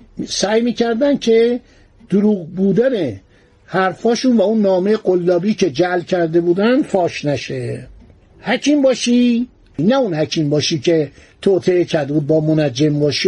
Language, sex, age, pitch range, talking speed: Persian, male, 60-79, 170-215 Hz, 130 wpm